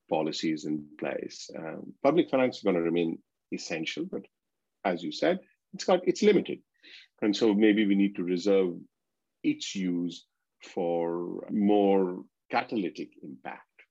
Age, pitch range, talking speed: 50-69, 80-100 Hz, 135 wpm